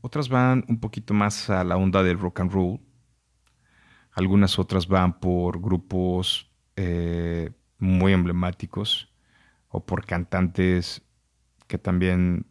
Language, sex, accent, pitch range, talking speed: Spanish, male, Mexican, 90-105 Hz, 120 wpm